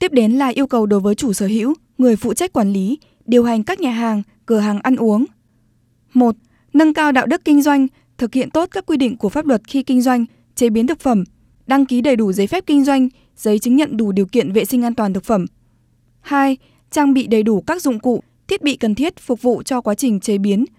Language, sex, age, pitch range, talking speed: Vietnamese, female, 20-39, 215-265 Hz, 250 wpm